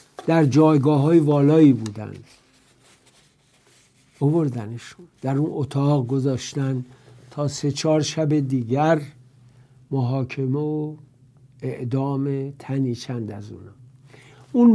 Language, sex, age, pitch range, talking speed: English, male, 60-79, 130-155 Hz, 95 wpm